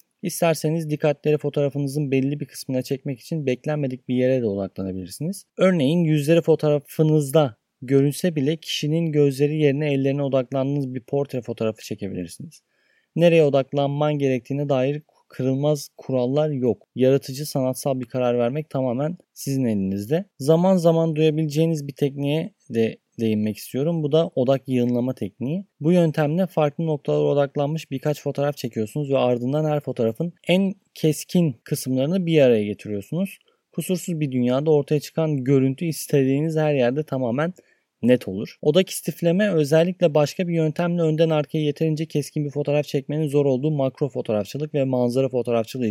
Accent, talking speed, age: native, 135 wpm, 30-49